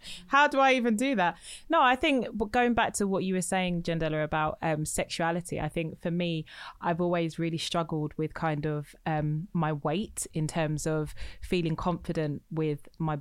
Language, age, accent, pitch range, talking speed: English, 20-39, British, 155-185 Hz, 185 wpm